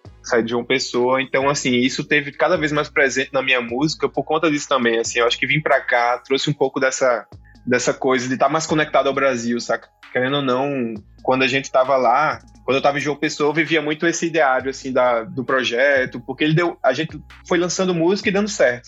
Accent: Brazilian